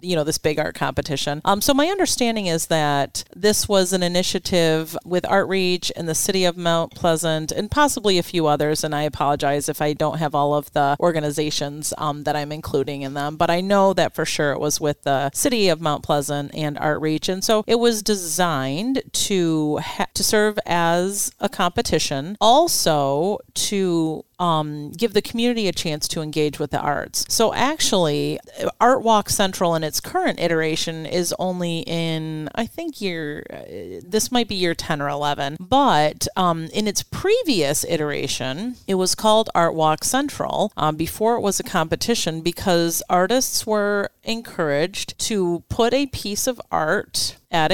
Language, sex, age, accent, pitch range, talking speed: English, female, 40-59, American, 150-205 Hz, 170 wpm